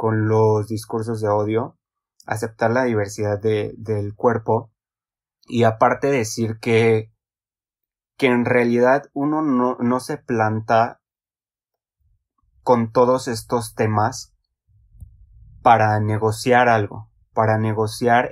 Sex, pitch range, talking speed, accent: male, 110-120 Hz, 100 wpm, Mexican